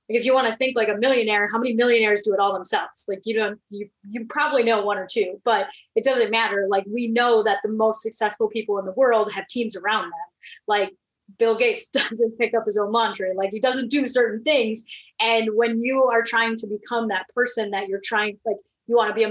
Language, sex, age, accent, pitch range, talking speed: English, female, 30-49, American, 205-235 Hz, 240 wpm